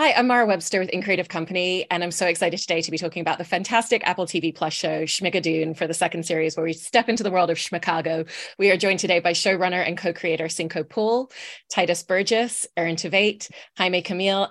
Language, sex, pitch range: English, female, 170-195 Hz